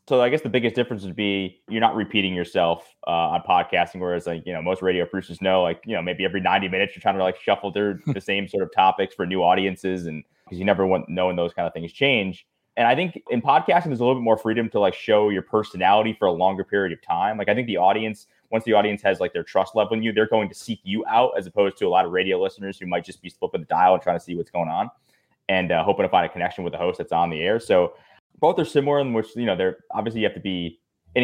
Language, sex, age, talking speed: English, male, 20-39, 285 wpm